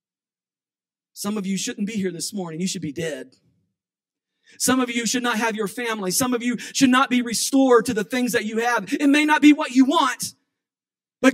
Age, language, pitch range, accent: 40-59, English, 190-275 Hz, American